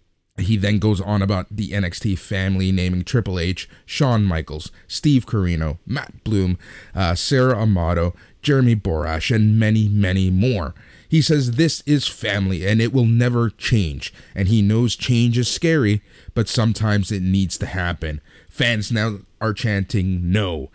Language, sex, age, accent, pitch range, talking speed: English, male, 30-49, American, 95-120 Hz, 155 wpm